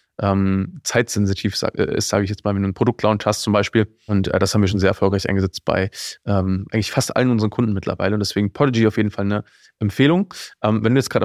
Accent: German